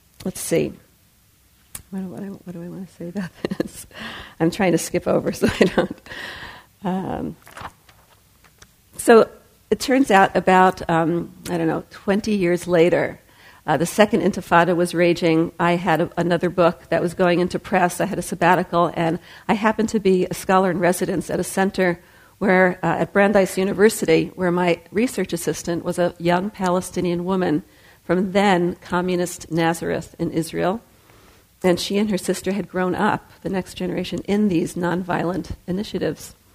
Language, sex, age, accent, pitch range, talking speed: English, female, 50-69, American, 170-190 Hz, 165 wpm